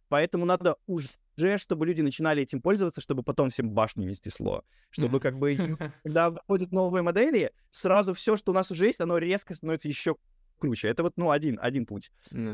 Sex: male